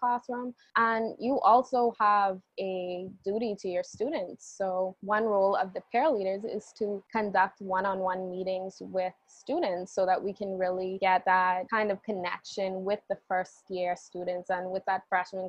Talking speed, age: 165 wpm, 20-39